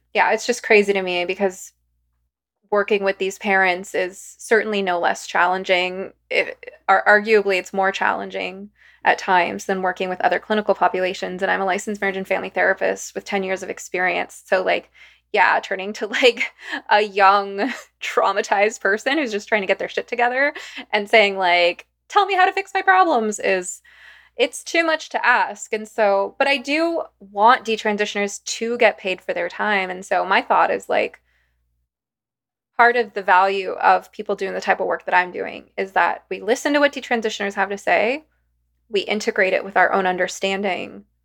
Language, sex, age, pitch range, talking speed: English, female, 20-39, 185-220 Hz, 180 wpm